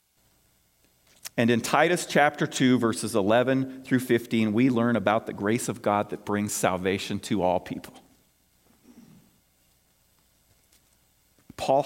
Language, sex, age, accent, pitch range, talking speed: English, male, 40-59, American, 110-185 Hz, 115 wpm